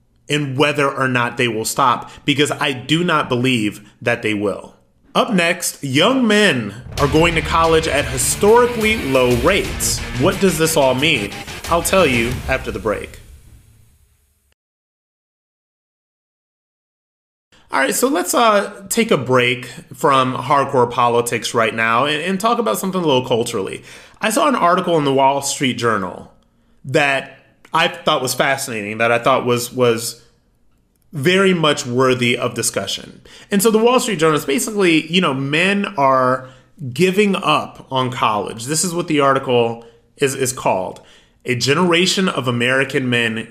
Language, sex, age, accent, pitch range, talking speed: English, male, 30-49, American, 120-175 Hz, 155 wpm